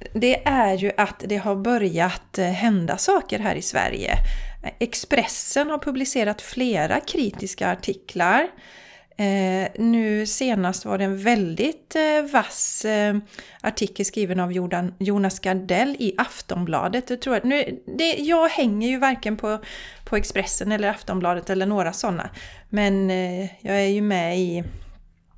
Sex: female